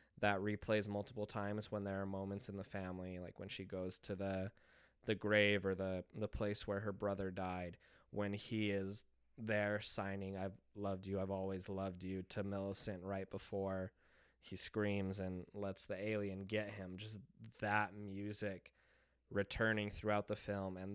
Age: 20-39